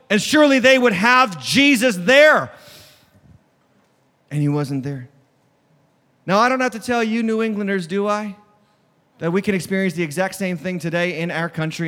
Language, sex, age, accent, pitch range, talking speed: English, male, 30-49, American, 145-215 Hz, 170 wpm